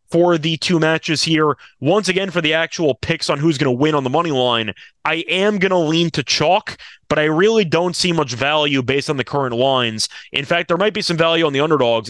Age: 20-39